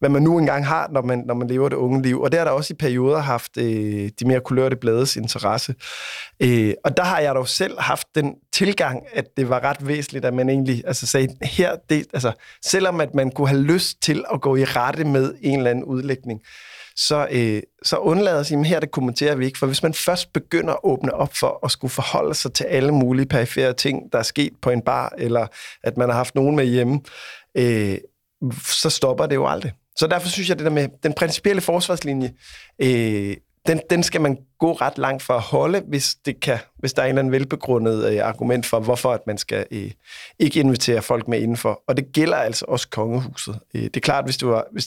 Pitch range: 120-150 Hz